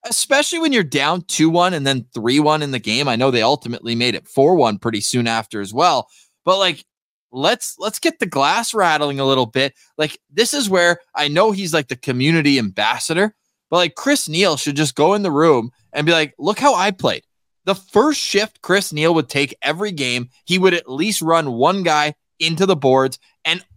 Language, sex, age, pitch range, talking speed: English, male, 20-39, 125-160 Hz, 205 wpm